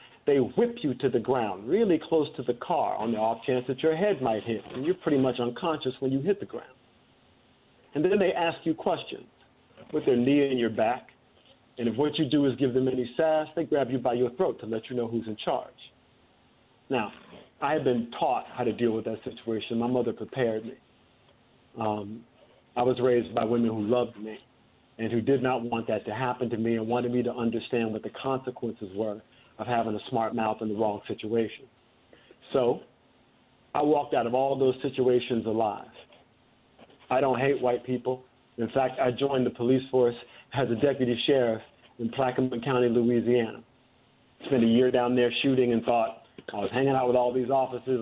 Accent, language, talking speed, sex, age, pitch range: American, English, 205 wpm, male, 50-69, 115-135 Hz